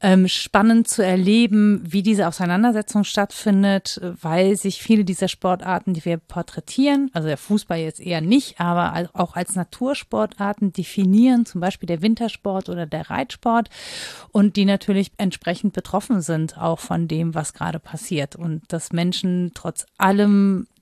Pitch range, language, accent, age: 165-215 Hz, German, German, 40-59